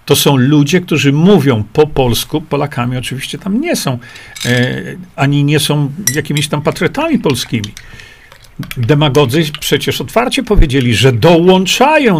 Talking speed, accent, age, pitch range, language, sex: 125 wpm, native, 50-69, 125-150 Hz, Polish, male